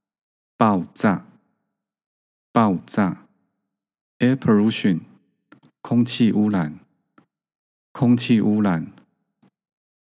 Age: 50-69